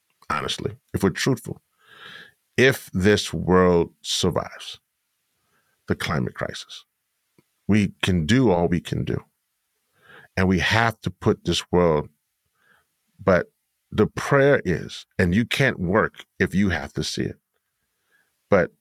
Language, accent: English, American